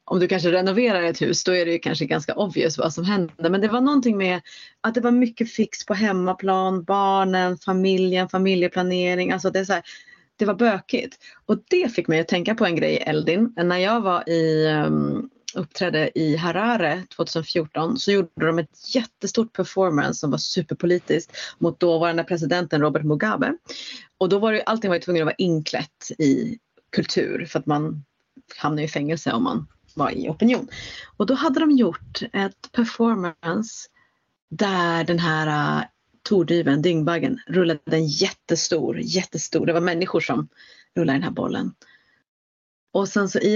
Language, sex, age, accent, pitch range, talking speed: Swedish, female, 30-49, native, 165-200 Hz, 170 wpm